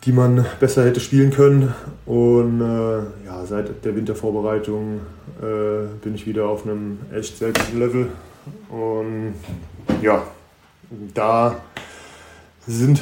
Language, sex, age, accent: German, male, 20-39, German